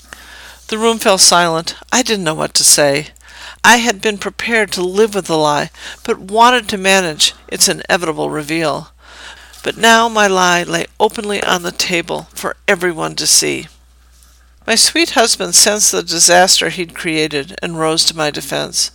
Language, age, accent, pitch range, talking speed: English, 50-69, American, 150-210 Hz, 165 wpm